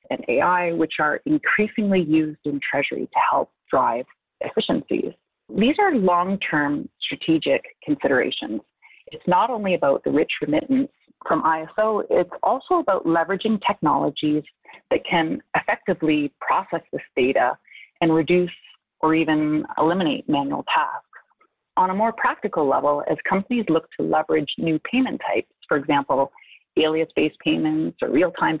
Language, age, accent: English, 30-49, American